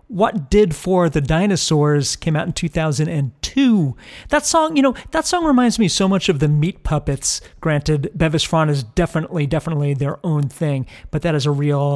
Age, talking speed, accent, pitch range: 40-59, 185 wpm, American, 145-180 Hz